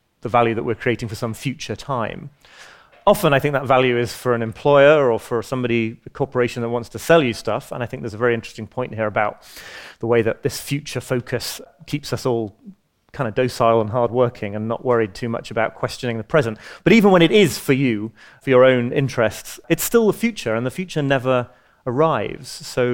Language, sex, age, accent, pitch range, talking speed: English, male, 30-49, British, 115-140 Hz, 215 wpm